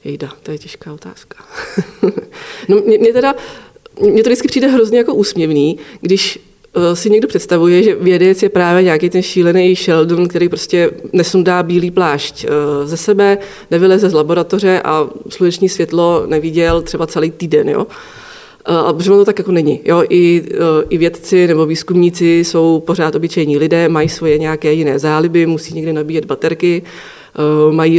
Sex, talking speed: female, 155 wpm